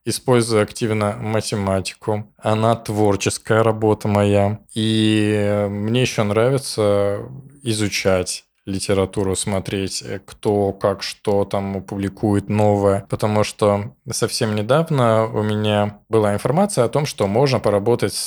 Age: 20-39